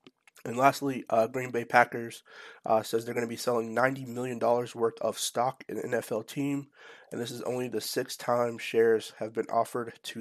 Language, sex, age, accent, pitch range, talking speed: English, male, 30-49, American, 115-130 Hz, 200 wpm